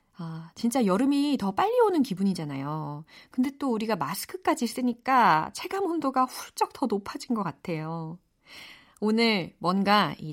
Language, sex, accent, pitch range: Korean, female, native, 180-290 Hz